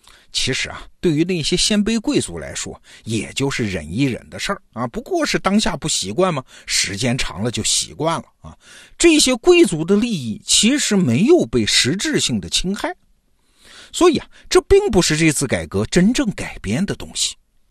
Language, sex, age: Chinese, male, 50-69